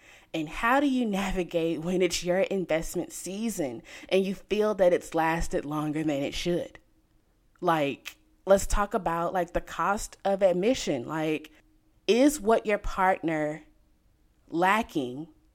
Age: 20-39